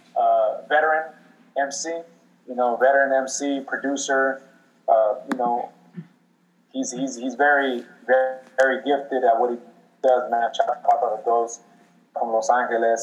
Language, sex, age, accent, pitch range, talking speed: English, male, 20-39, American, 120-145 Hz, 135 wpm